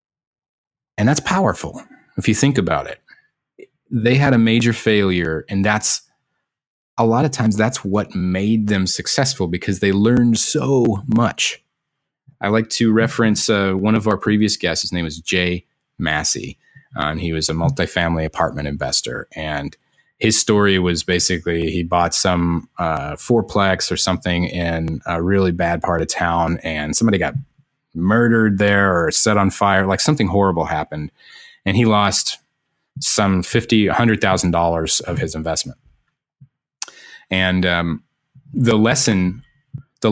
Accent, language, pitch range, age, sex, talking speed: American, English, 90-115 Hz, 30-49, male, 150 wpm